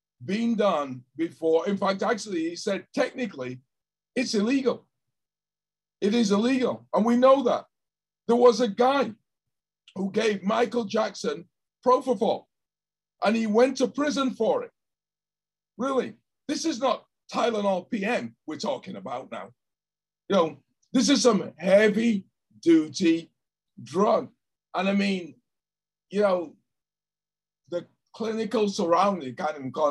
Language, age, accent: English, 50-69, American